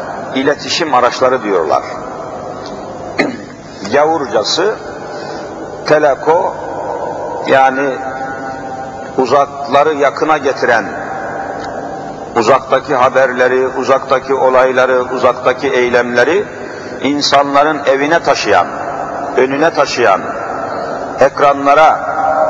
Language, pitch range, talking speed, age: Turkish, 130-155 Hz, 55 wpm, 50-69